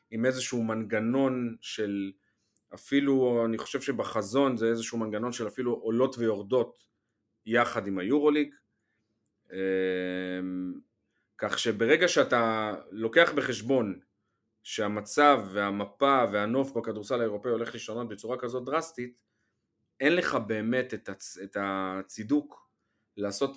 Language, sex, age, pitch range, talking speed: Hebrew, male, 30-49, 105-130 Hz, 100 wpm